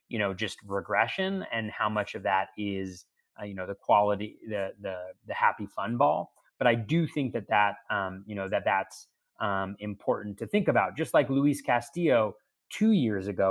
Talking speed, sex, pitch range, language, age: 195 wpm, male, 100-125 Hz, English, 30-49